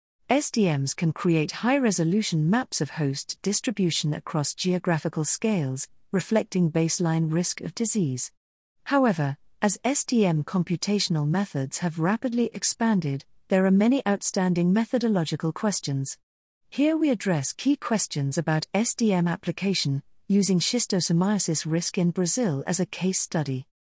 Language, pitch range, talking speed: English, 160-215 Hz, 120 wpm